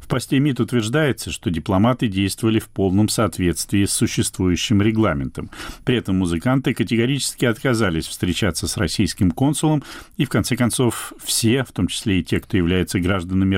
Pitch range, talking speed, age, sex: 90-120 Hz, 155 wpm, 40-59, male